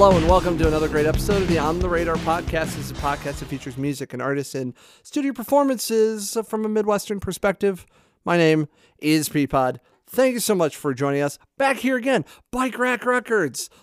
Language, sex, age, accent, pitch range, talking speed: English, male, 40-59, American, 135-205 Hz, 200 wpm